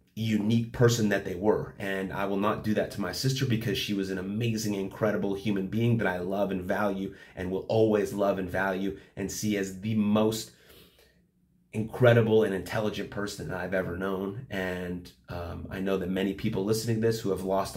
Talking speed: 200 wpm